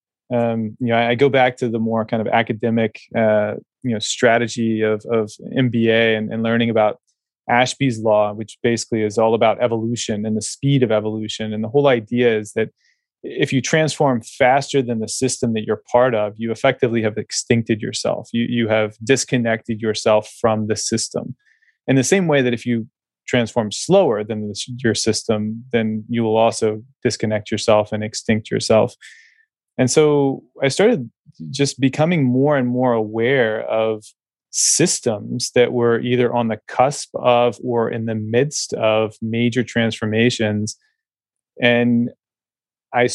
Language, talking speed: English, 160 wpm